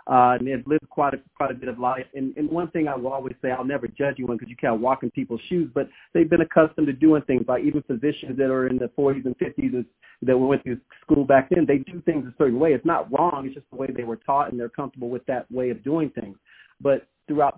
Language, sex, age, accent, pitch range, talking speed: English, male, 40-59, American, 125-150 Hz, 275 wpm